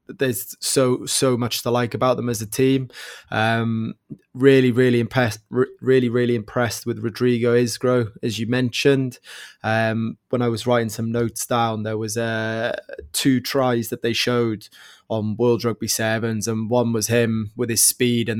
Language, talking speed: English, 175 wpm